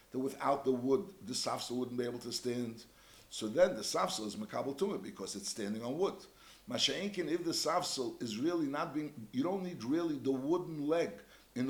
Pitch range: 125-180 Hz